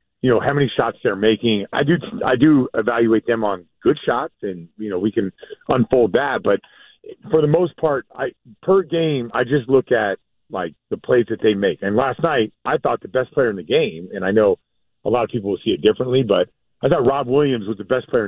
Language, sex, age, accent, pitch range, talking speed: English, male, 40-59, American, 110-145 Hz, 235 wpm